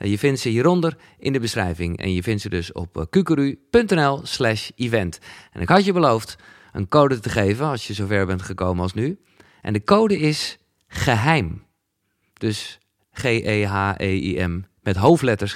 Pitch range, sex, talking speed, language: 105-140 Hz, male, 160 wpm, Dutch